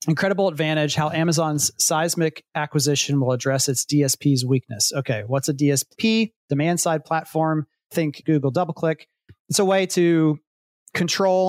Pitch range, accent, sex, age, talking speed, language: 130-150 Hz, American, male, 30-49, 135 wpm, English